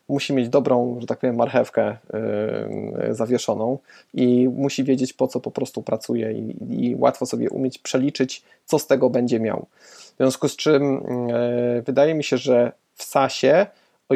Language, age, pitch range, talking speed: Polish, 20-39, 130-140 Hz, 160 wpm